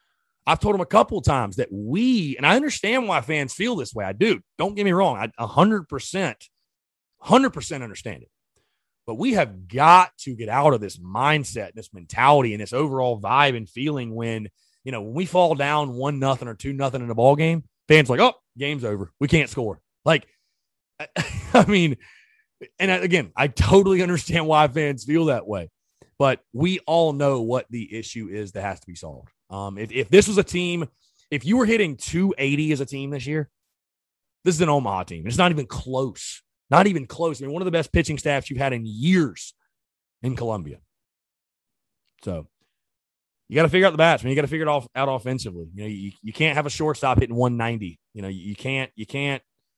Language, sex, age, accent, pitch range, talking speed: English, male, 30-49, American, 115-160 Hz, 210 wpm